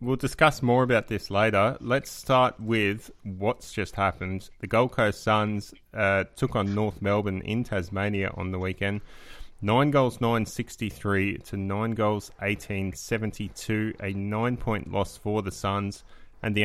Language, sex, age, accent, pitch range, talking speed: English, male, 20-39, Australian, 95-115 Hz, 155 wpm